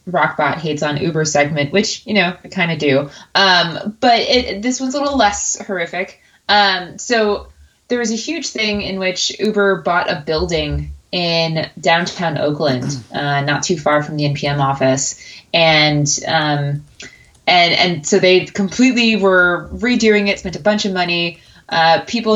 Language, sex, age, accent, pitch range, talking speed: English, female, 20-39, American, 165-215 Hz, 165 wpm